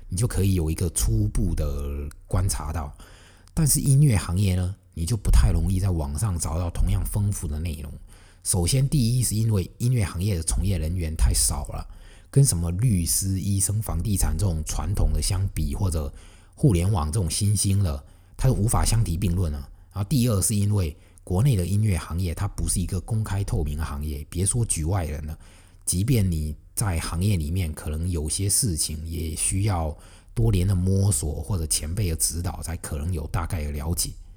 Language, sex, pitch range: Chinese, male, 80-100 Hz